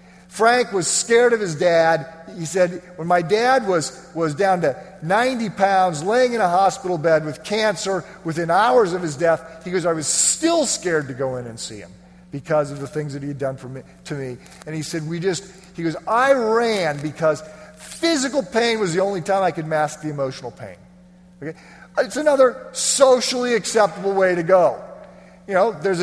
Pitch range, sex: 165-215 Hz, male